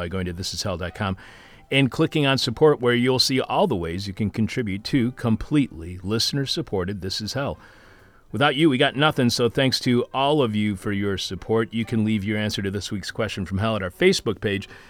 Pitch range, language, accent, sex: 95-130 Hz, English, American, male